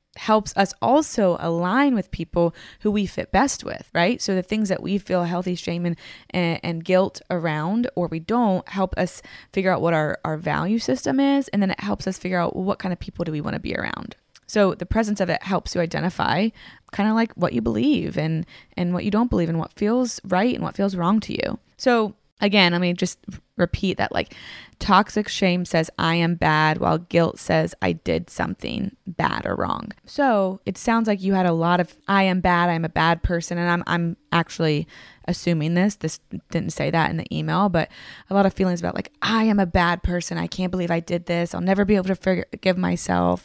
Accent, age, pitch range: American, 20-39, 170-205 Hz